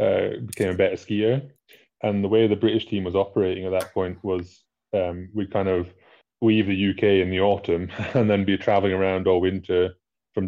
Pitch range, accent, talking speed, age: 90-105 Hz, British, 195 wpm, 20-39